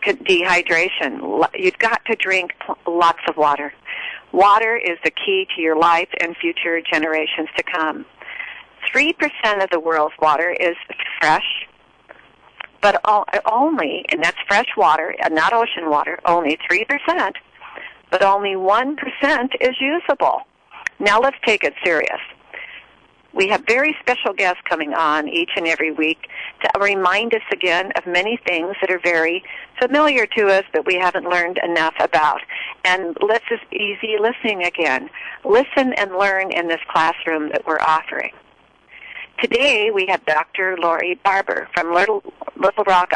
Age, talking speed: 50-69, 140 wpm